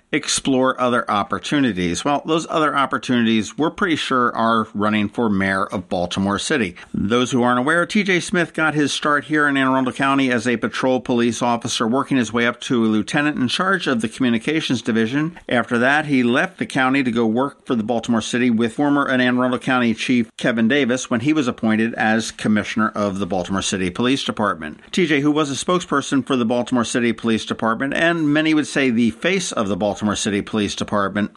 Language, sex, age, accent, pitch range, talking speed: English, male, 50-69, American, 110-140 Hz, 200 wpm